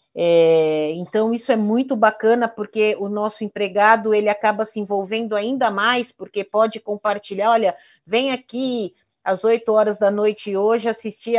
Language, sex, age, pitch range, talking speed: Portuguese, female, 40-59, 205-240 Hz, 155 wpm